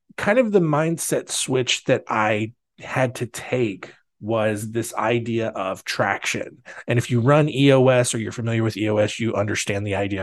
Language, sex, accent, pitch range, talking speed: English, male, American, 115-145 Hz, 170 wpm